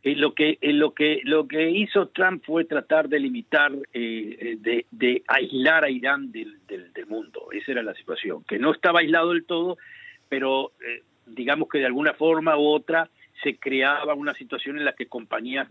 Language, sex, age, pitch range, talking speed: Spanish, male, 50-69, 125-195 Hz, 195 wpm